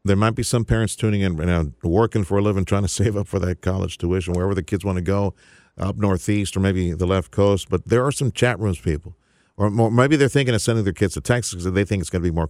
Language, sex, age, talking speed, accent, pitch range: English, male, 50-69, 275 wpm, American, 80-110 Hz